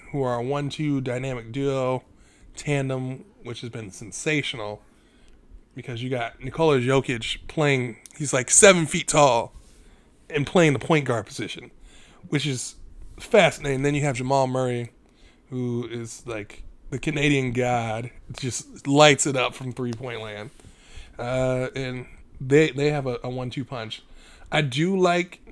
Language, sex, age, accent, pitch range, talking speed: English, male, 20-39, American, 125-145 Hz, 145 wpm